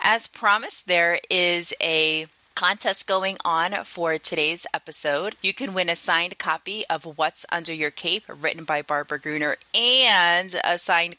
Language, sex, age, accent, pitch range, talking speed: English, female, 20-39, American, 150-185 Hz, 155 wpm